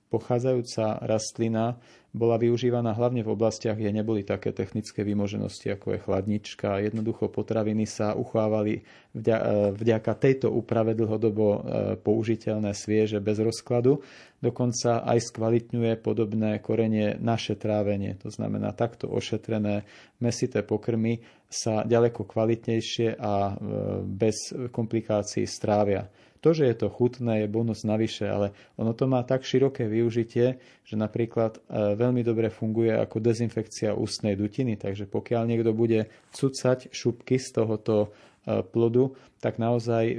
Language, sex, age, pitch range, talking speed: Slovak, male, 40-59, 105-120 Hz, 120 wpm